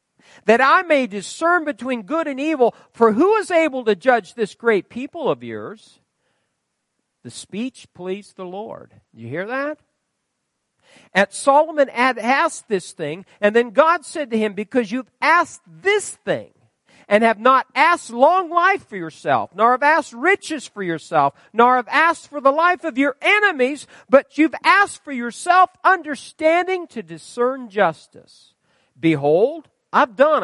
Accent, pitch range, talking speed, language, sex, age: American, 195-290 Hz, 155 wpm, English, male, 50-69